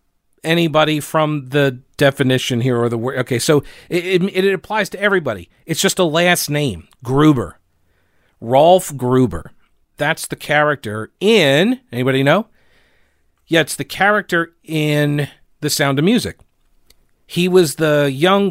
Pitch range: 125-155 Hz